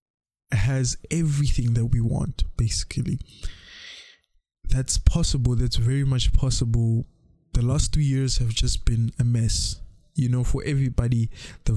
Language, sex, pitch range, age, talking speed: English, male, 115-130 Hz, 20-39, 135 wpm